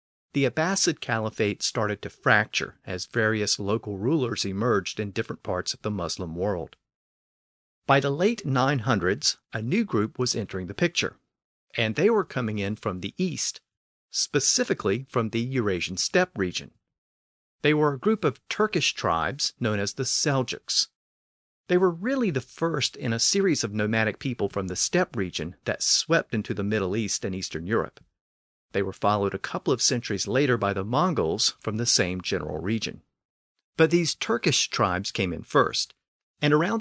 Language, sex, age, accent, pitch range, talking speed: English, male, 40-59, American, 100-140 Hz, 170 wpm